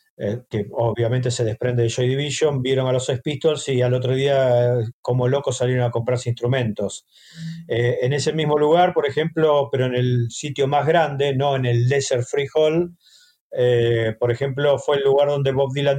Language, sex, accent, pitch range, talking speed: Spanish, male, Argentinian, 120-140 Hz, 190 wpm